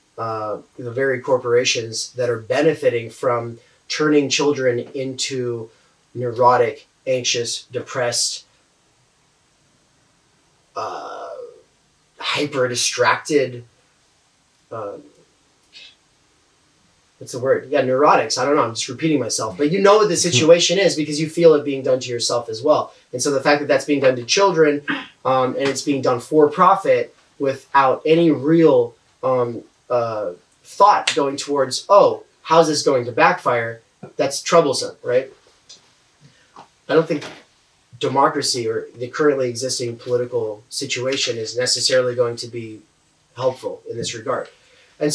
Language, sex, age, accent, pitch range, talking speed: English, male, 30-49, American, 125-170 Hz, 135 wpm